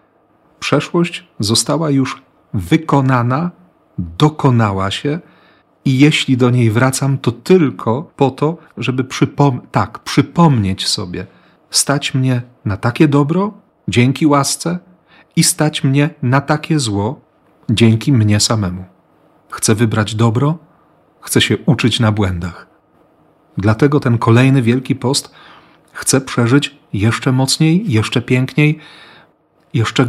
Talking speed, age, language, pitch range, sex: 110 wpm, 40-59, Polish, 115-150 Hz, male